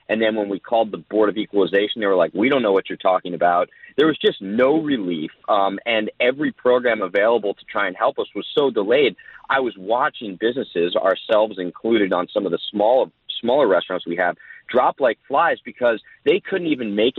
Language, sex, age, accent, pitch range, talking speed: English, male, 30-49, American, 100-125 Hz, 205 wpm